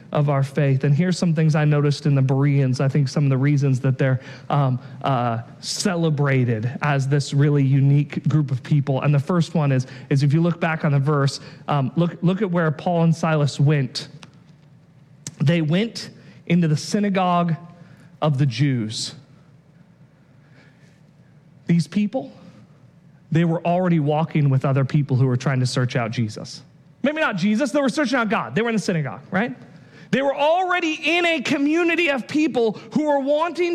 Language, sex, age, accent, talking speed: English, male, 40-59, American, 180 wpm